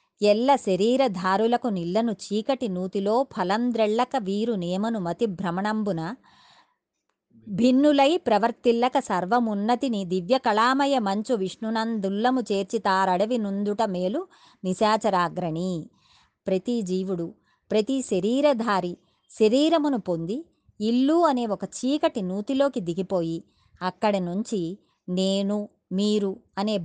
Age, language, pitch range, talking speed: 20-39, Telugu, 185-250 Hz, 85 wpm